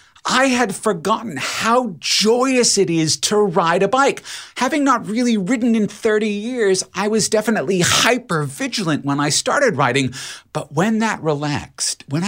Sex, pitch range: male, 150-225 Hz